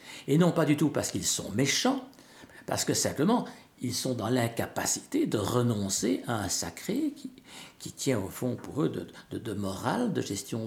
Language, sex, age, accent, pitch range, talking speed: French, male, 60-79, French, 100-140 Hz, 190 wpm